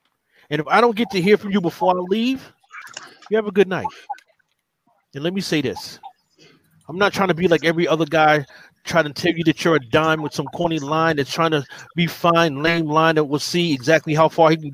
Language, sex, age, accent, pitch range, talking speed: English, male, 30-49, American, 145-170 Hz, 235 wpm